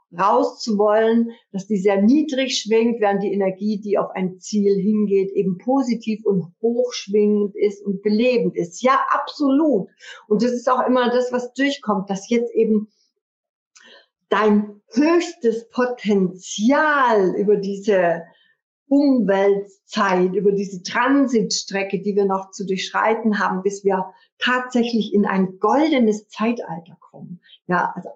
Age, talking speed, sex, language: 50-69, 135 wpm, female, German